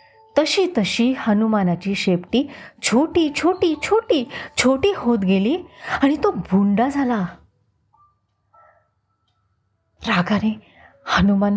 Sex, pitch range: female, 165-250 Hz